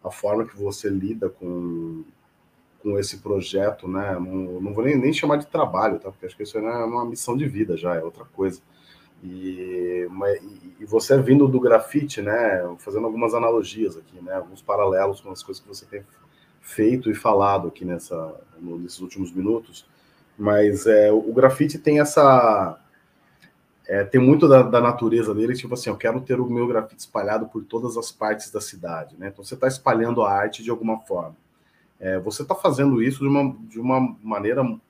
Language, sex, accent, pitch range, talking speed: Portuguese, male, Brazilian, 100-130 Hz, 180 wpm